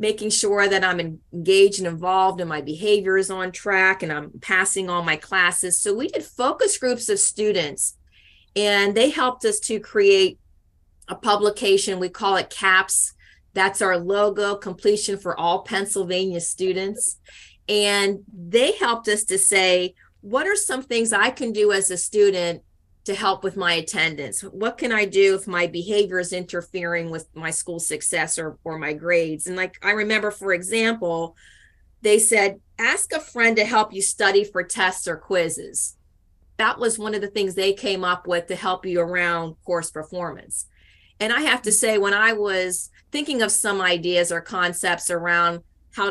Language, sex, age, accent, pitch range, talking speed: English, female, 30-49, American, 175-210 Hz, 175 wpm